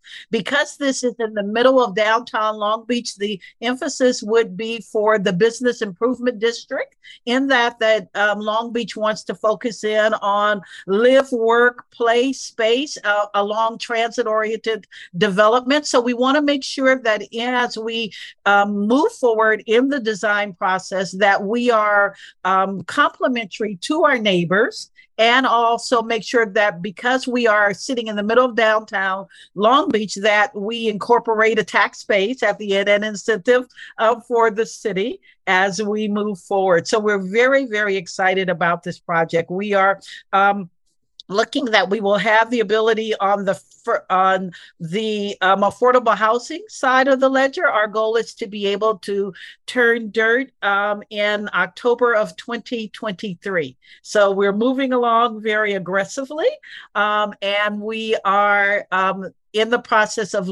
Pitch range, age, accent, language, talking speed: 200-235 Hz, 50-69, American, English, 155 wpm